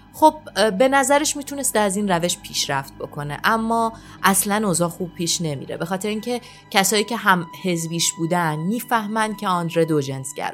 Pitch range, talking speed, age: 165-225 Hz, 155 wpm, 30-49